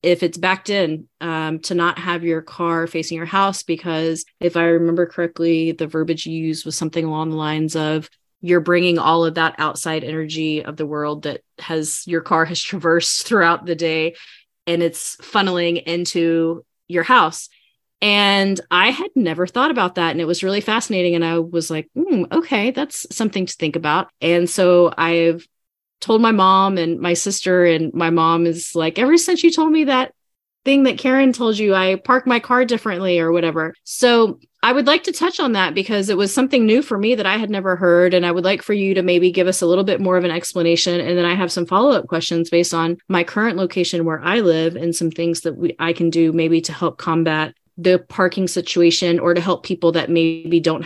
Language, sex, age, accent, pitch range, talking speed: English, female, 30-49, American, 165-195 Hz, 215 wpm